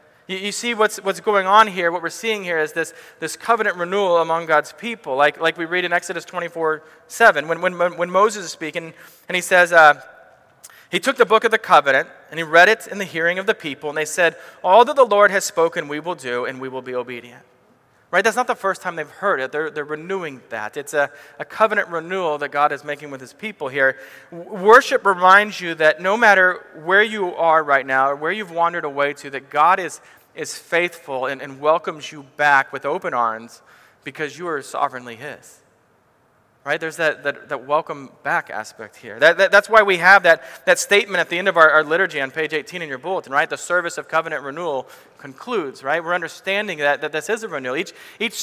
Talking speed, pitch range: 225 wpm, 150-200 Hz